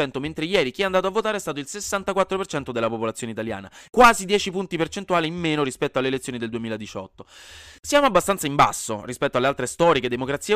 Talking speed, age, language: 195 wpm, 20-39, Italian